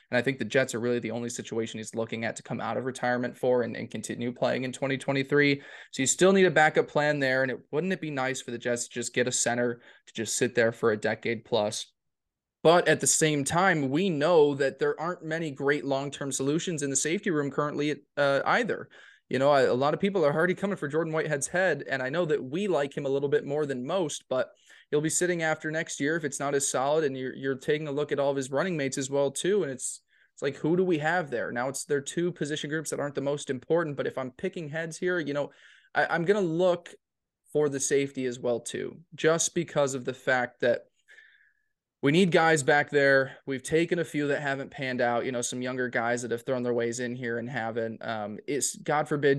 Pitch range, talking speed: 125-155 Hz, 250 wpm